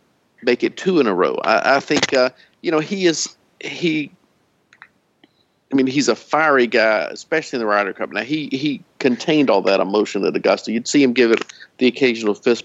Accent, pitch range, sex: American, 115-145 Hz, male